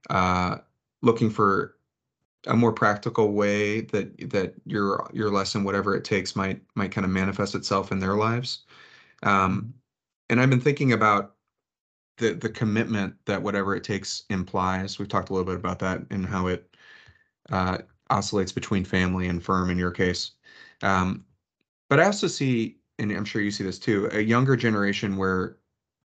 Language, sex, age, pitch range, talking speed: English, male, 30-49, 95-115 Hz, 170 wpm